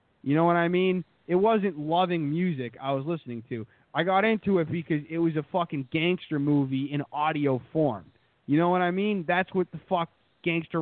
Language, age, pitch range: English, 20-39, 130-165 Hz